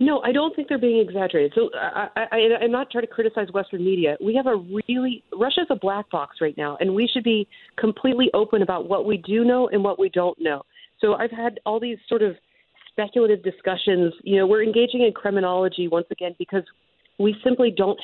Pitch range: 185-230 Hz